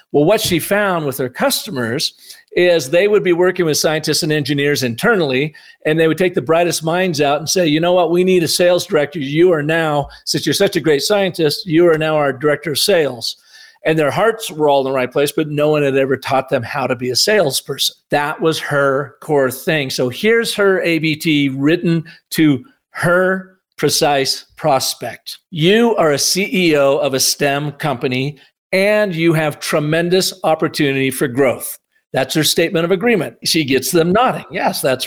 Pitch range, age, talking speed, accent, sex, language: 145-180 Hz, 50-69, 190 wpm, American, male, English